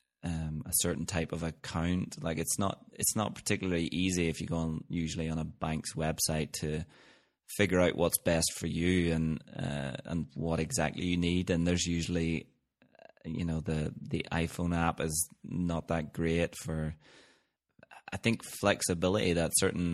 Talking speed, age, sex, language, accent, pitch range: 165 wpm, 20-39, male, English, British, 80-90 Hz